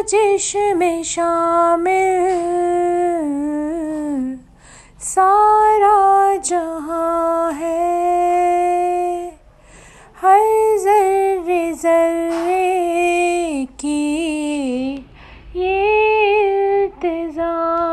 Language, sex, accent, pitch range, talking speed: Hindi, female, native, 260-345 Hz, 40 wpm